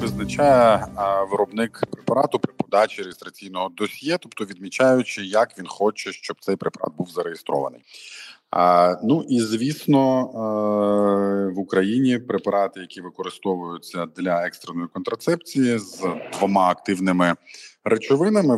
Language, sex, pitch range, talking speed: Ukrainian, male, 90-130 Hz, 115 wpm